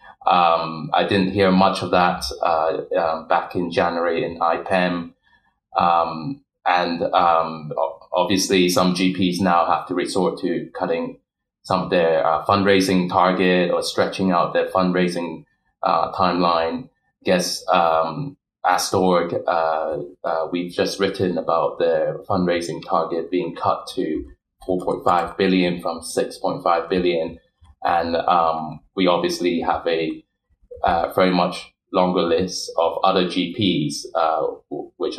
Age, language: 20-39, English